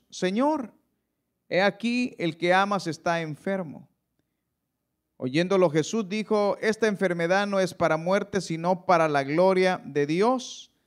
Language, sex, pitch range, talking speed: Spanish, male, 160-200 Hz, 125 wpm